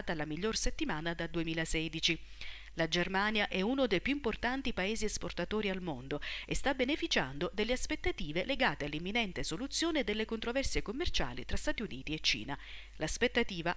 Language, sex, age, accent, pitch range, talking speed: Italian, female, 40-59, native, 160-235 Hz, 145 wpm